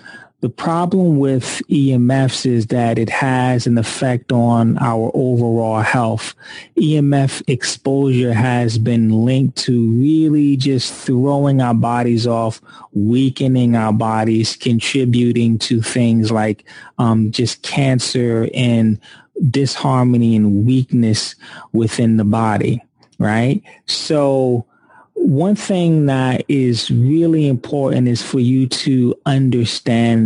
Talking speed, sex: 110 wpm, male